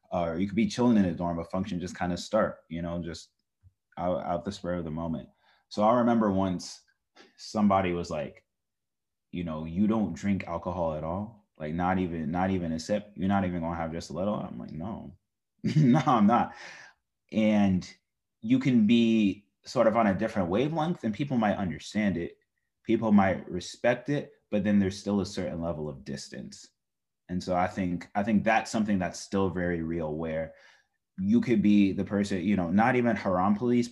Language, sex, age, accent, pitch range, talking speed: English, male, 20-39, American, 85-105 Hz, 200 wpm